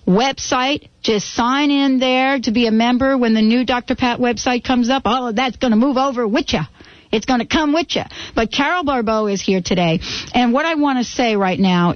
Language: English